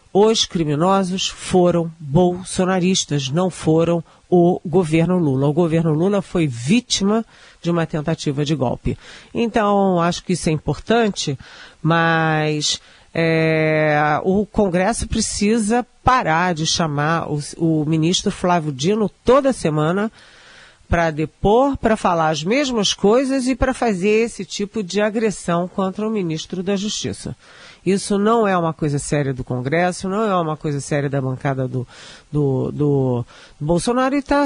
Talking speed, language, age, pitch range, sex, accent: 140 wpm, Portuguese, 40-59, 155-220 Hz, female, Brazilian